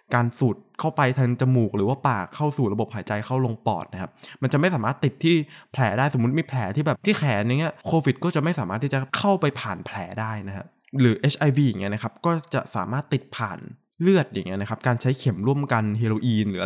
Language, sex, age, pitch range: Thai, male, 20-39, 110-150 Hz